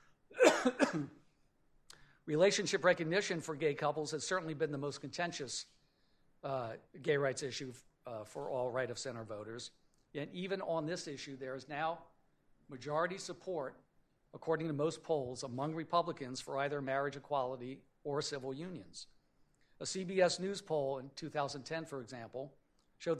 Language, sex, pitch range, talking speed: English, male, 135-165 Hz, 135 wpm